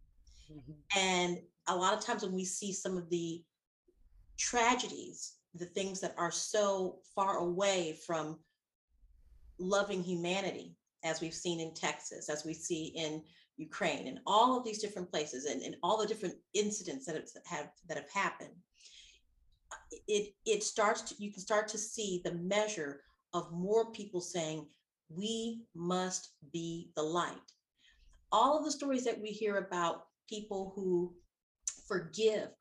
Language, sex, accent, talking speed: English, female, American, 145 wpm